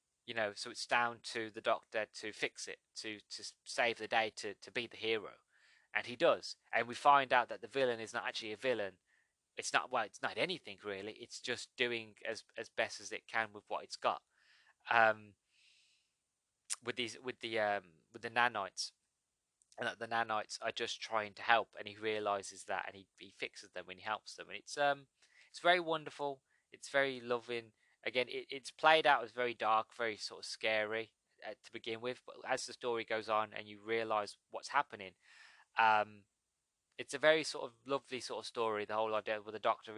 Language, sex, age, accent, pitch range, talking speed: English, male, 20-39, British, 105-125 Hz, 210 wpm